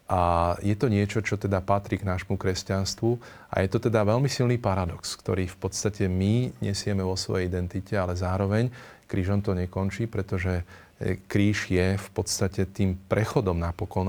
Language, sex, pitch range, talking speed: Slovak, male, 95-105 Hz, 160 wpm